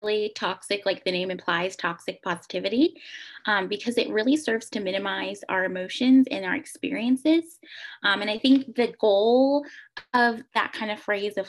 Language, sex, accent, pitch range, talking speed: English, female, American, 195-265 Hz, 160 wpm